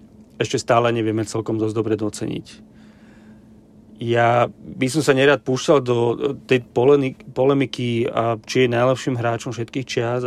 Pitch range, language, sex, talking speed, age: 115-130 Hz, Slovak, male, 130 wpm, 40-59